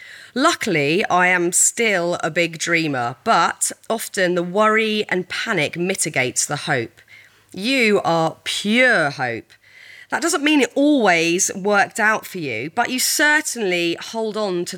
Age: 30-49